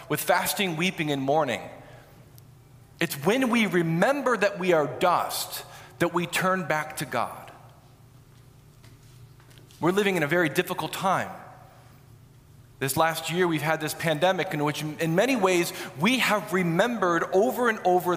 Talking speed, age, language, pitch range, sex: 145 wpm, 40-59, English, 130-190 Hz, male